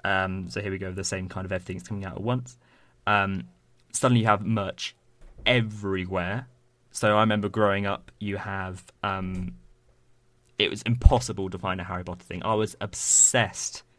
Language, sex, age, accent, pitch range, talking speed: English, male, 20-39, British, 90-110 Hz, 170 wpm